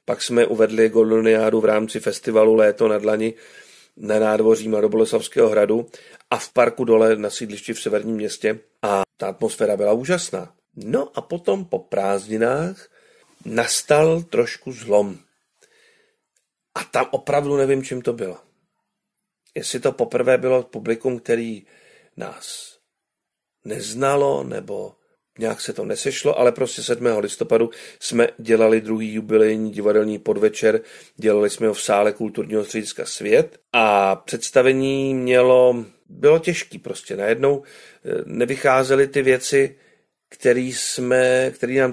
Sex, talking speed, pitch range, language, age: male, 125 wpm, 110-150 Hz, Czech, 40-59